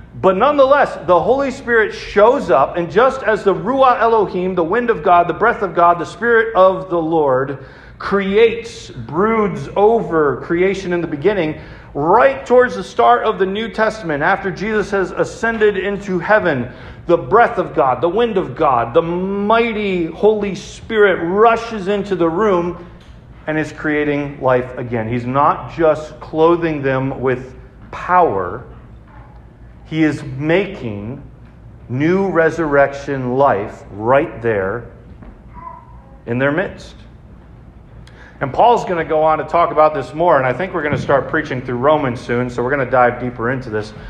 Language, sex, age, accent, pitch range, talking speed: English, male, 40-59, American, 135-195 Hz, 160 wpm